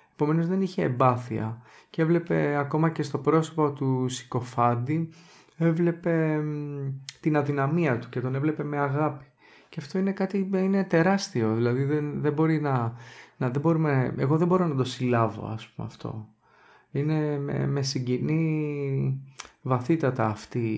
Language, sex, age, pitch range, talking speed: Greek, male, 30-49, 125-160 Hz, 145 wpm